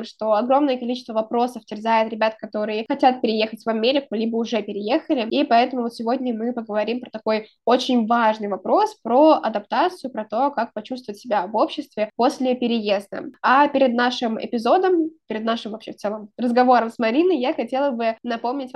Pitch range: 220-265 Hz